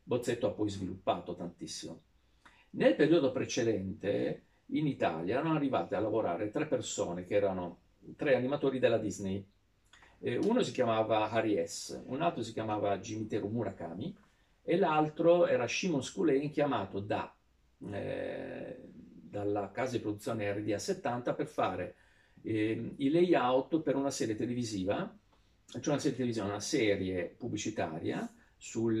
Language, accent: Italian, native